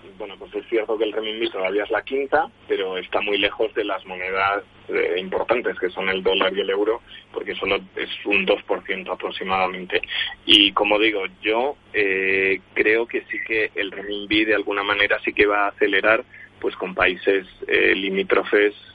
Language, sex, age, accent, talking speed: Spanish, male, 20-39, Spanish, 180 wpm